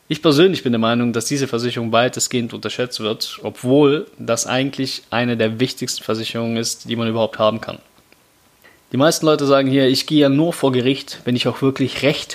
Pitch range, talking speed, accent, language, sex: 120-150 Hz, 195 wpm, German, German, male